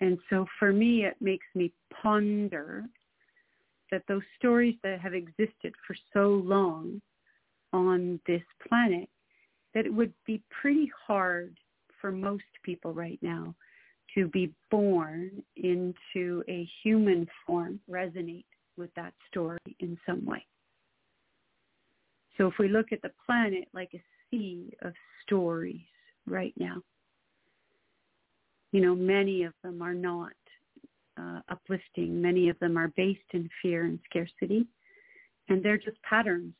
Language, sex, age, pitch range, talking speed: English, female, 40-59, 175-205 Hz, 135 wpm